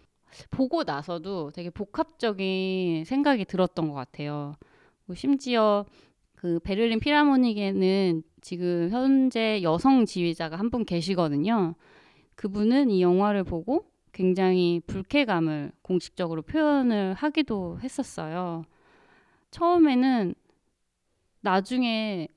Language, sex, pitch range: Korean, female, 170-230 Hz